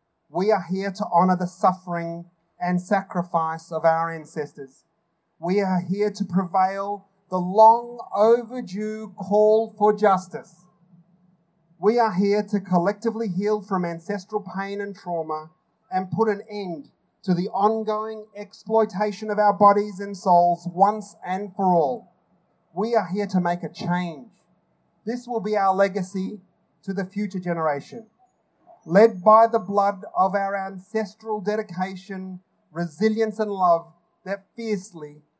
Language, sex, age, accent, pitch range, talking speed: English, male, 30-49, Australian, 175-210 Hz, 135 wpm